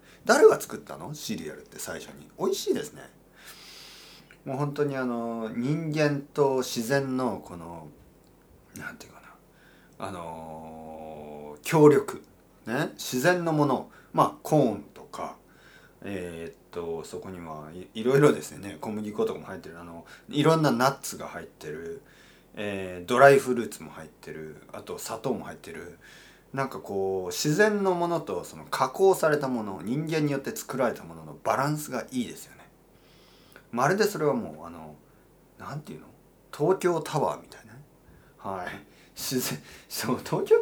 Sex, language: male, Japanese